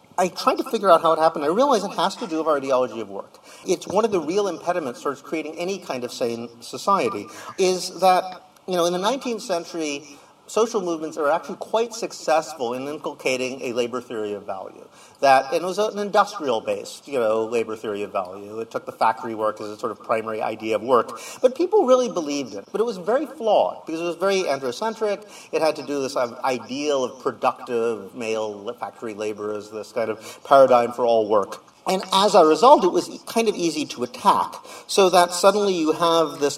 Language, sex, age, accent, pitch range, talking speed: Italian, male, 40-59, American, 120-185 Hz, 210 wpm